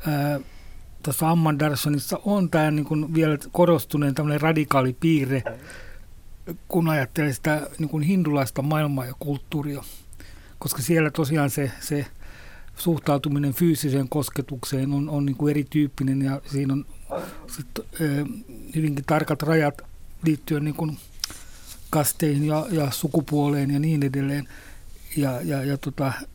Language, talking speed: Finnish, 115 wpm